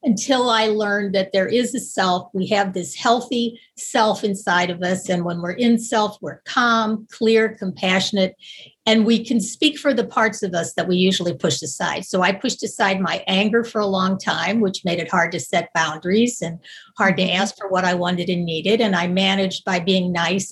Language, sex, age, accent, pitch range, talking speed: English, female, 50-69, American, 185-230 Hz, 210 wpm